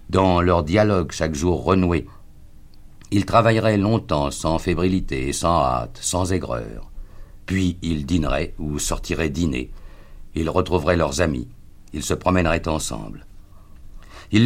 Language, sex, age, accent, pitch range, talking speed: French, male, 50-69, French, 80-95 Hz, 125 wpm